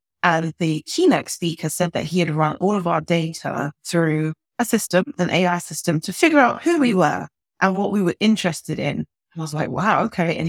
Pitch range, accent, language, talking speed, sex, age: 155-200 Hz, British, English, 215 wpm, female, 30-49